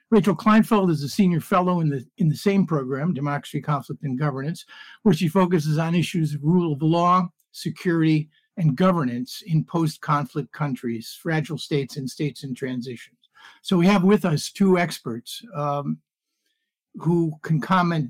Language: English